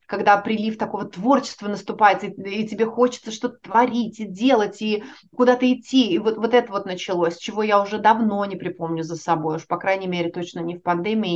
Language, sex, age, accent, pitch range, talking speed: Ukrainian, female, 30-49, native, 210-275 Hz, 200 wpm